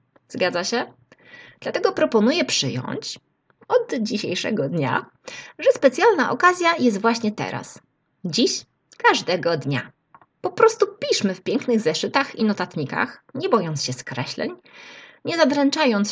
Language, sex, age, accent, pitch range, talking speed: Polish, female, 20-39, native, 185-275 Hz, 115 wpm